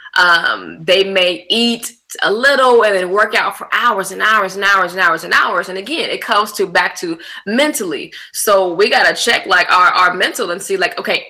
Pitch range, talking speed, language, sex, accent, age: 180-240 Hz, 225 wpm, English, female, American, 20-39